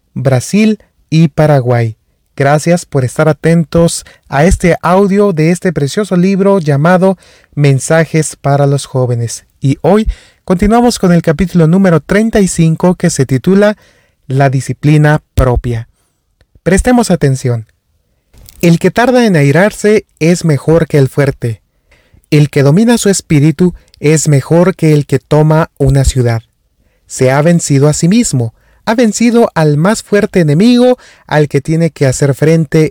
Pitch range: 140-190 Hz